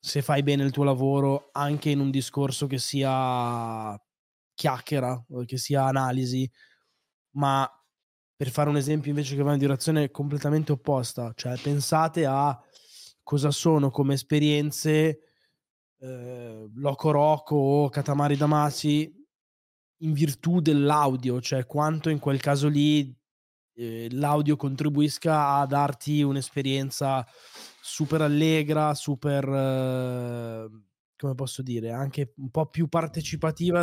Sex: male